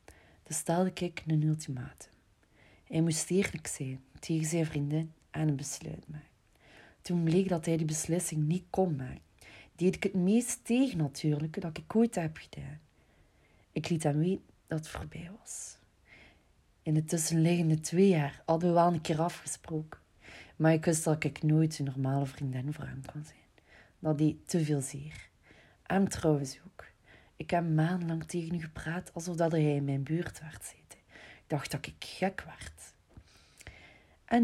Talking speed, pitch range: 165 wpm, 150-175 Hz